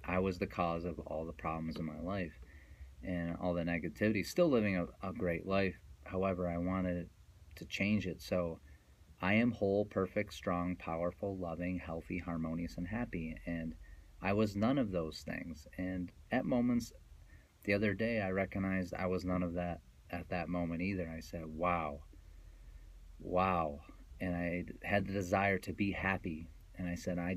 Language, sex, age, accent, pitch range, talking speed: English, male, 30-49, American, 80-100 Hz, 175 wpm